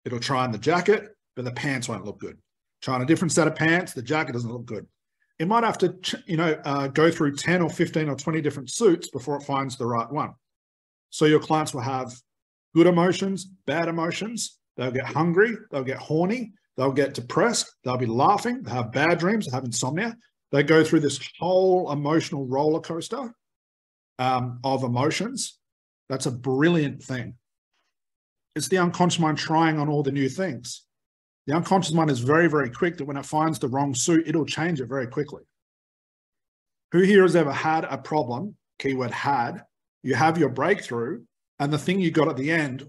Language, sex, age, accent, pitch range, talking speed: English, male, 40-59, Australian, 125-165 Hz, 195 wpm